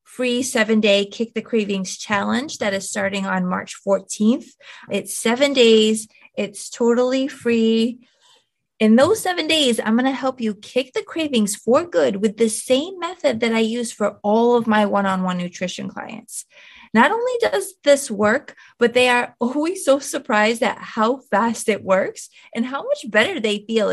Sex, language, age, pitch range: female, English, 20-39, 210-275 Hz